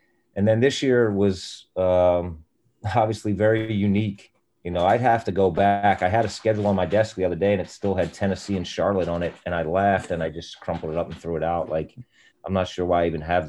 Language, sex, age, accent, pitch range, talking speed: English, male, 30-49, American, 80-95 Hz, 250 wpm